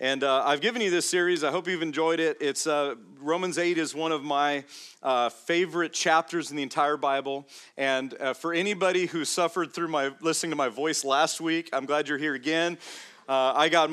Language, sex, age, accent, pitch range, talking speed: English, male, 40-59, American, 140-165 Hz, 210 wpm